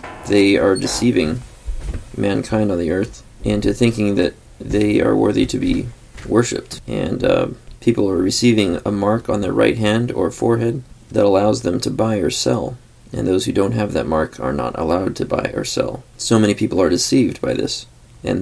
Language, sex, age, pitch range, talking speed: English, male, 20-39, 95-120 Hz, 190 wpm